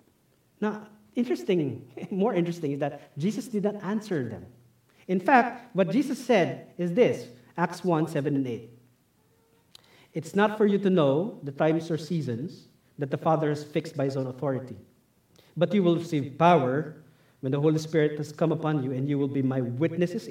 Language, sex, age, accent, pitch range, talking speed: English, male, 50-69, Filipino, 150-215 Hz, 180 wpm